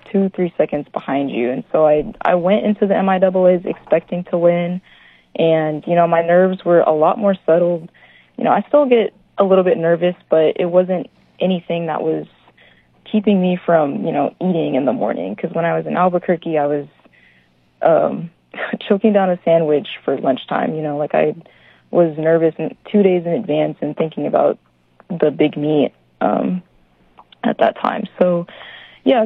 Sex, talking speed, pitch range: female, 180 wpm, 155-190 Hz